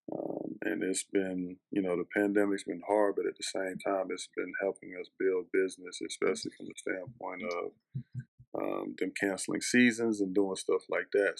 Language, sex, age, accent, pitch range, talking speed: English, male, 20-39, American, 95-110 Hz, 185 wpm